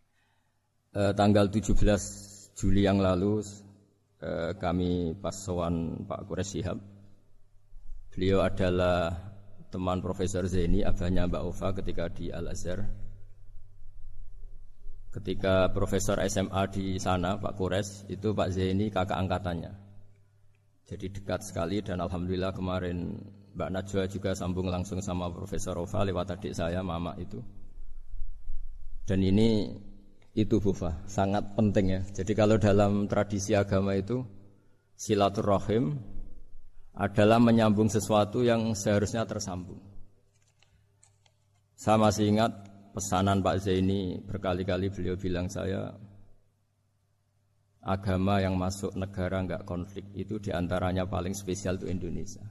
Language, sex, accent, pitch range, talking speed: Indonesian, male, native, 95-100 Hz, 110 wpm